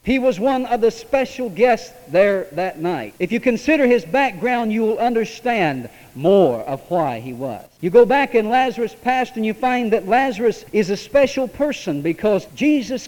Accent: American